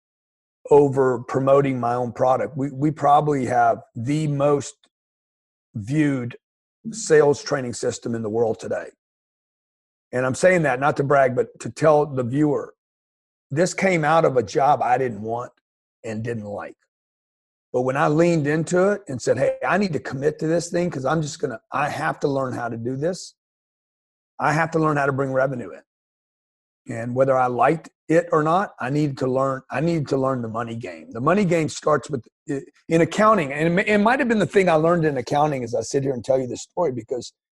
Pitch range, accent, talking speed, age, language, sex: 125-165 Hz, American, 205 wpm, 40-59, English, male